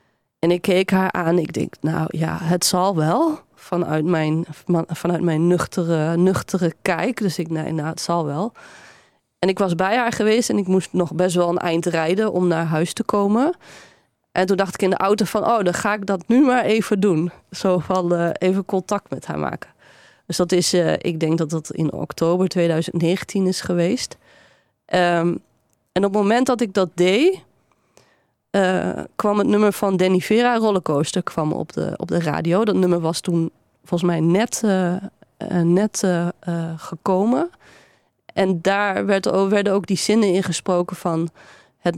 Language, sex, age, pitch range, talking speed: Dutch, female, 20-39, 170-205 Hz, 185 wpm